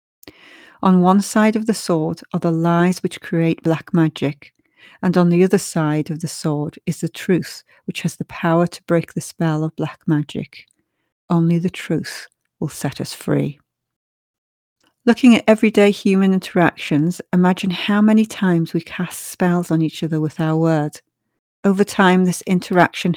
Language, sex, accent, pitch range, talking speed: English, female, British, 165-185 Hz, 165 wpm